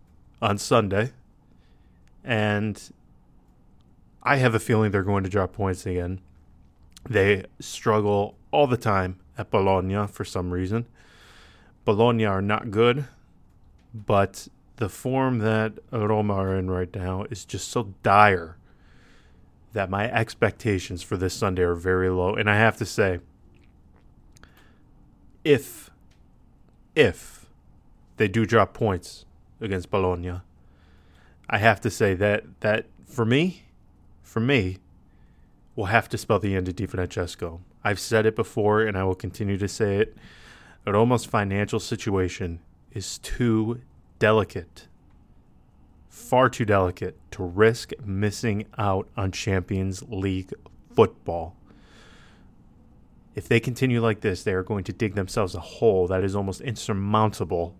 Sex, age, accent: male, 20-39, American